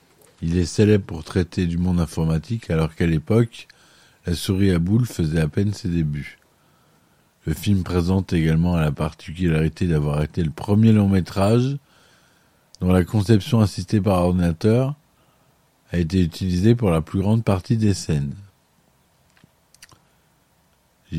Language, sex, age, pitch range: French, male, 50-69, 80-100 Hz